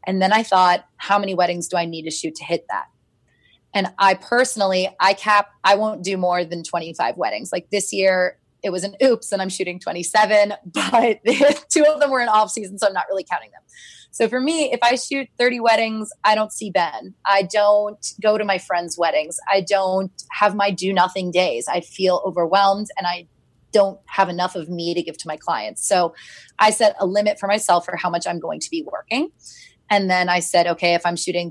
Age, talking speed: 20-39, 220 wpm